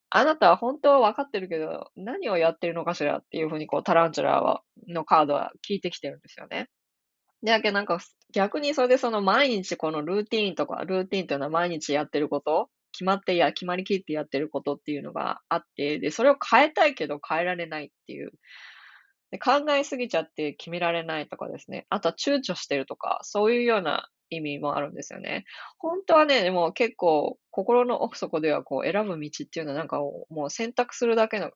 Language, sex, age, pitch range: Japanese, female, 20-39, 155-230 Hz